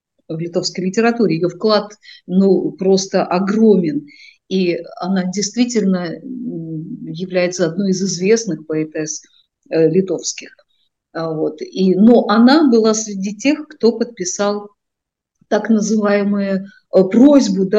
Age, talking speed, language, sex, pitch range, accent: 50-69, 90 wpm, Russian, female, 175-215 Hz, native